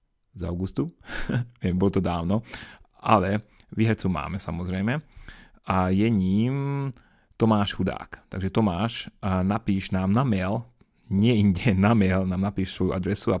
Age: 30-49